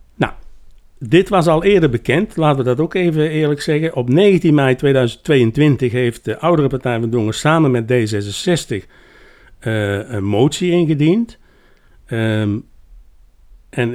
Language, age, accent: Dutch, 60-79, Dutch